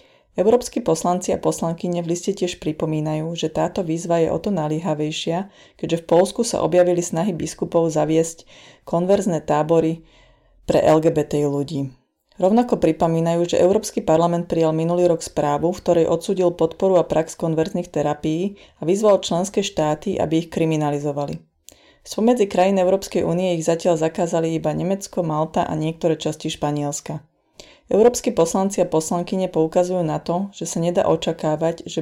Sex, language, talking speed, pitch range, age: female, Slovak, 145 wpm, 160-180 Hz, 30-49